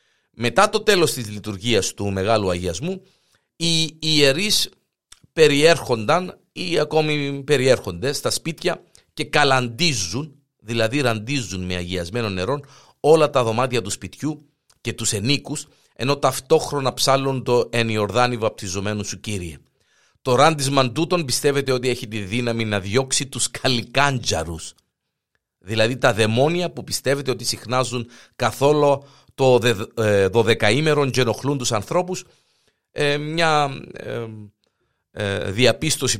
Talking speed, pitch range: 110 wpm, 110-150 Hz